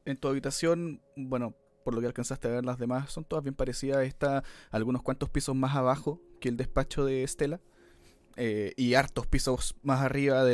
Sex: male